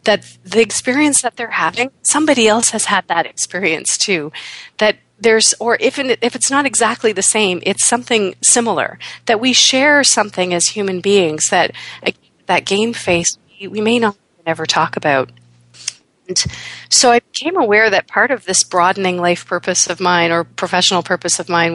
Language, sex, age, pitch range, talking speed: English, female, 40-59, 160-205 Hz, 170 wpm